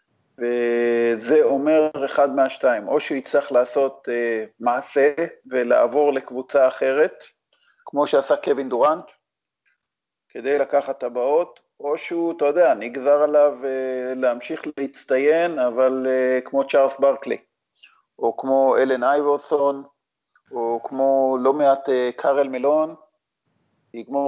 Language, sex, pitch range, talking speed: Hebrew, male, 125-145 Hz, 115 wpm